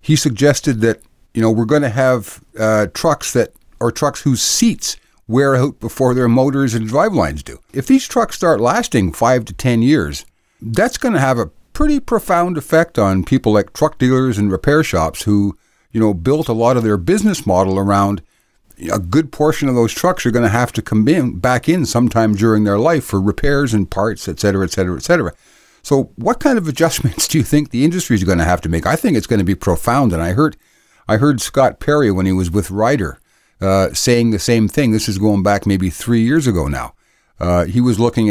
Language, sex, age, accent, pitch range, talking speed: English, male, 50-69, American, 100-135 Hz, 225 wpm